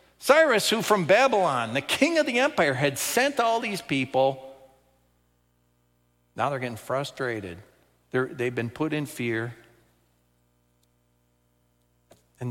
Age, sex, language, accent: 50-69, male, English, American